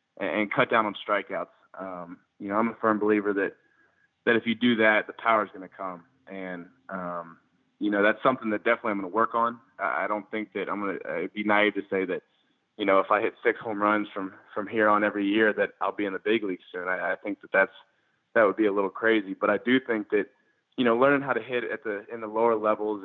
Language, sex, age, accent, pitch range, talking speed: English, male, 20-39, American, 100-115 Hz, 260 wpm